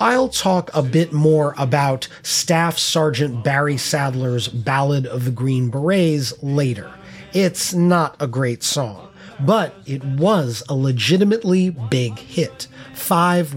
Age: 30-49